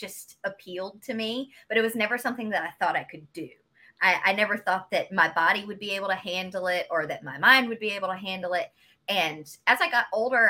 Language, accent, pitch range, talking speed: English, American, 195-265 Hz, 245 wpm